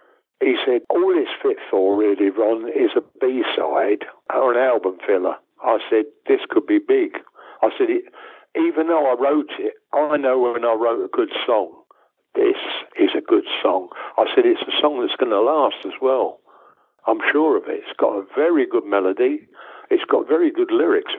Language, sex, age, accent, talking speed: English, male, 60-79, British, 190 wpm